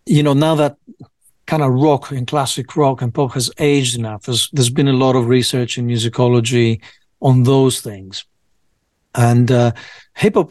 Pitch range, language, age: 120-145 Hz, English, 50-69